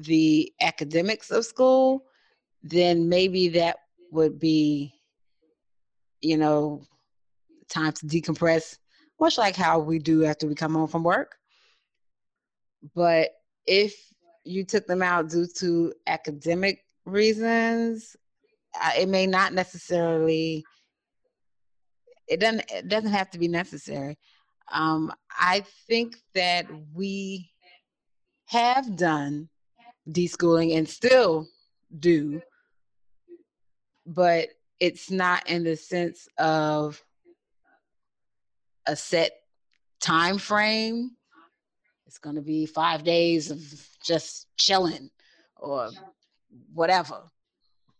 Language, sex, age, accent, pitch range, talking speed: English, female, 30-49, American, 160-205 Hz, 100 wpm